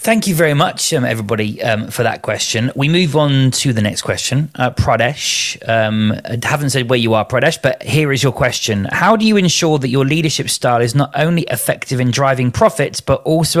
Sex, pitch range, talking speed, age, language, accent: male, 115-135 Hz, 215 wpm, 30-49, English, British